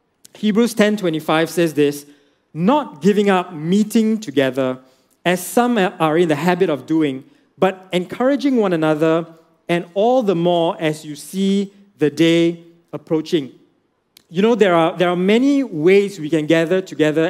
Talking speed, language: 150 wpm, English